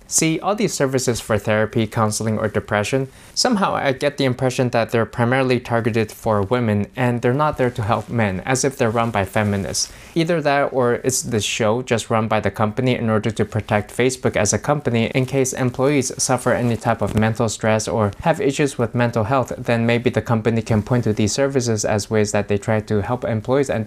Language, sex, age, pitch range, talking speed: English, male, 20-39, 110-130 Hz, 215 wpm